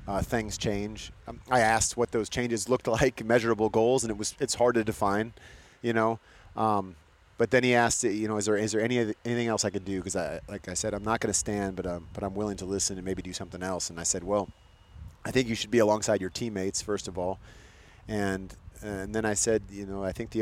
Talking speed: 255 wpm